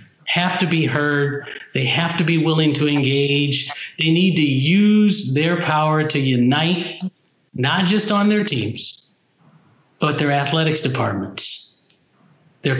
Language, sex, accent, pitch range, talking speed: English, male, American, 140-170 Hz, 135 wpm